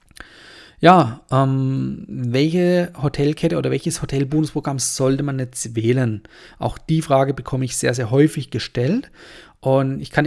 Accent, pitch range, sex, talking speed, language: German, 130-165 Hz, male, 135 wpm, German